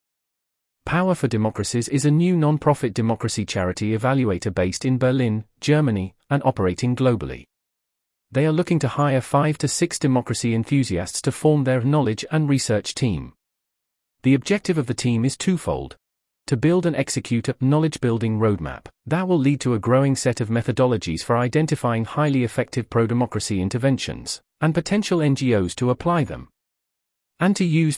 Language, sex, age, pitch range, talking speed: English, male, 40-59, 110-140 Hz, 155 wpm